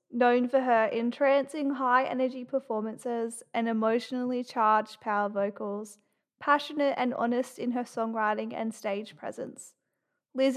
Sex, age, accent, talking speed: female, 20-39, Australian, 120 wpm